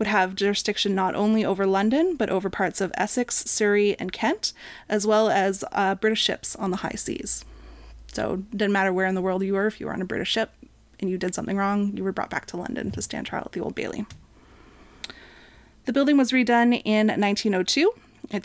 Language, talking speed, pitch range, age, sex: English, 220 wpm, 195-230 Hz, 30-49, female